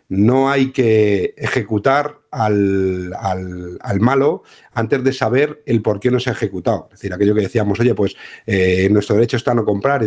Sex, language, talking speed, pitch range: male, Spanish, 190 wpm, 115-135 Hz